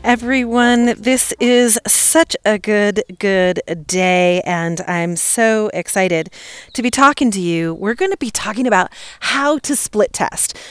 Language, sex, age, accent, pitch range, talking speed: English, female, 30-49, American, 190-275 Hz, 150 wpm